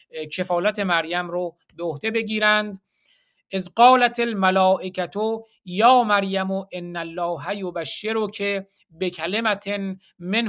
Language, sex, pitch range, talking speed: Persian, male, 180-215 Hz, 95 wpm